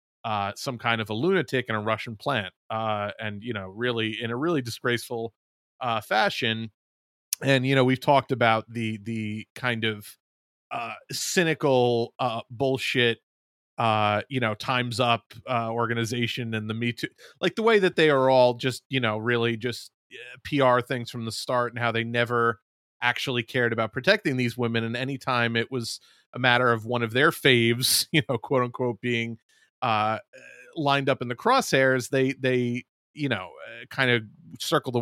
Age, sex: 30-49, male